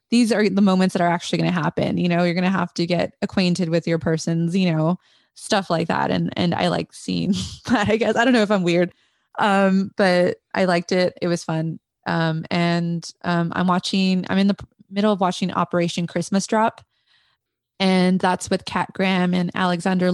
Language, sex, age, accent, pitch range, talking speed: English, female, 20-39, American, 170-195 Hz, 210 wpm